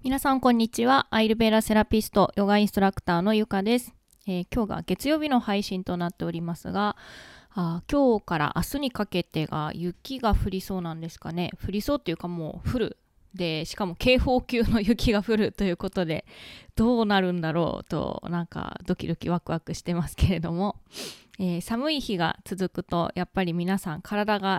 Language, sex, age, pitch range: Japanese, female, 20-39, 175-220 Hz